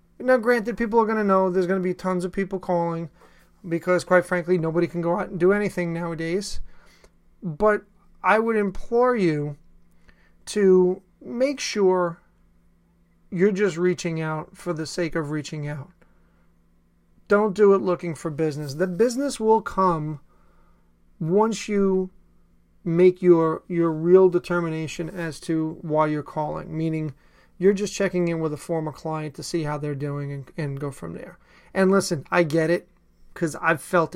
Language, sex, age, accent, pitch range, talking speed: English, male, 30-49, American, 140-195 Hz, 165 wpm